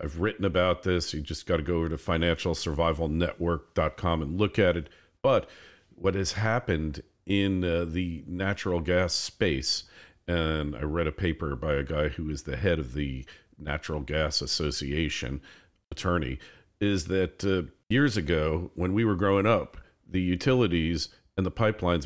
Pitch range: 80-100 Hz